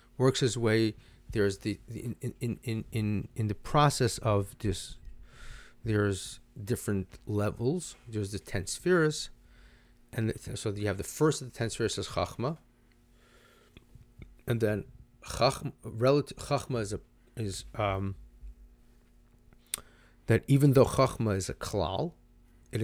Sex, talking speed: male, 135 wpm